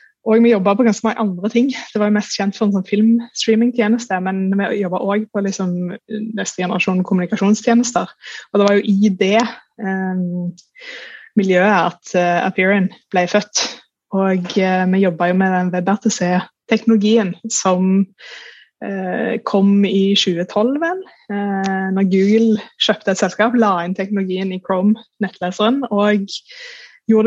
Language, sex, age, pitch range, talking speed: English, female, 20-39, 185-220 Hz, 145 wpm